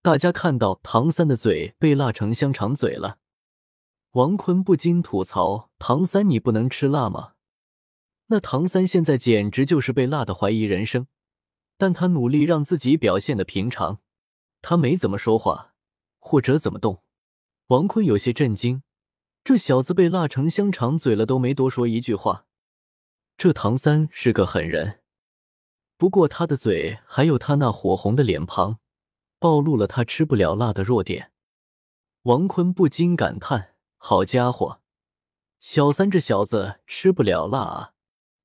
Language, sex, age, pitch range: Chinese, male, 20-39, 110-165 Hz